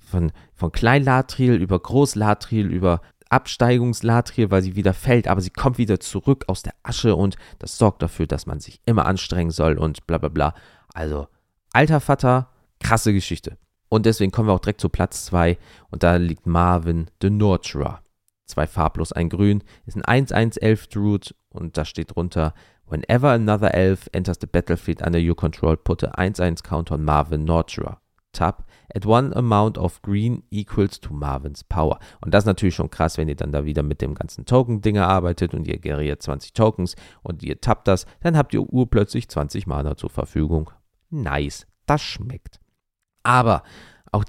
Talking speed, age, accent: 175 wpm, 40-59, German